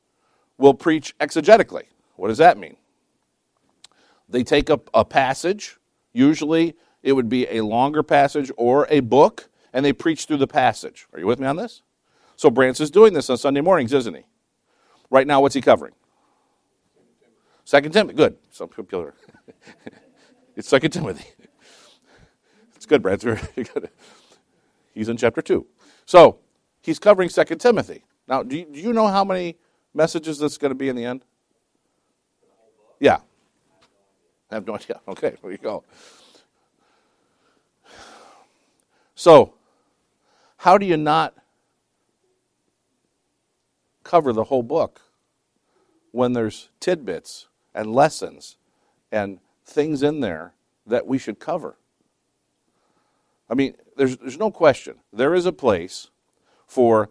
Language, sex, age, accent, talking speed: English, male, 50-69, American, 130 wpm